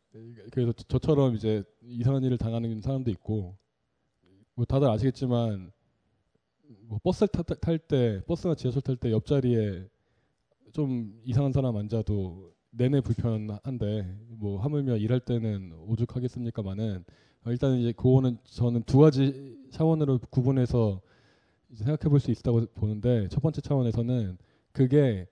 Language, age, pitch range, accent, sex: Korean, 20-39, 110-135 Hz, native, male